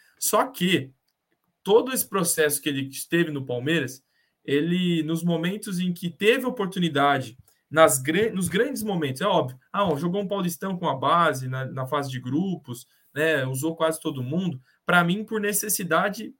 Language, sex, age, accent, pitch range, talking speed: Portuguese, male, 20-39, Brazilian, 155-195 Hz, 160 wpm